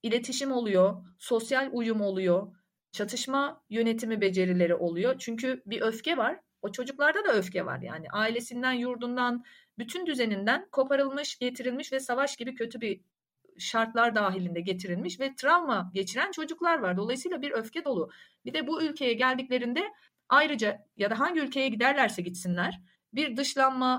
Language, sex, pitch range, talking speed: Turkish, female, 205-275 Hz, 140 wpm